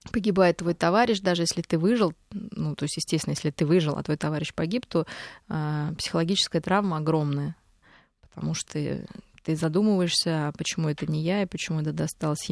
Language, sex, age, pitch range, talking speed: Russian, female, 20-39, 160-195 Hz, 175 wpm